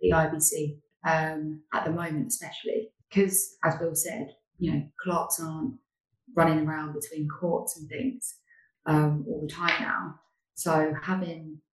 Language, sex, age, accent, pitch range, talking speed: English, female, 20-39, British, 145-165 Hz, 145 wpm